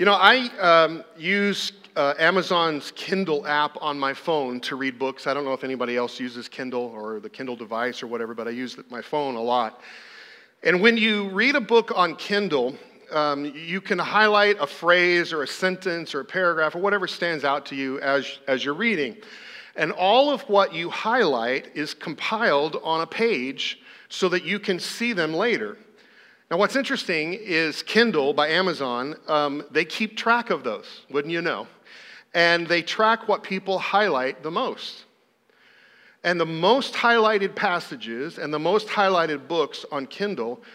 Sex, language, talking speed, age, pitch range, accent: male, English, 175 wpm, 40-59, 140-205 Hz, American